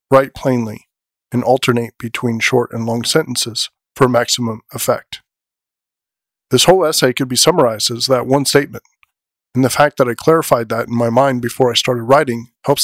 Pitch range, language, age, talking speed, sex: 115-135 Hz, English, 40-59, 175 wpm, male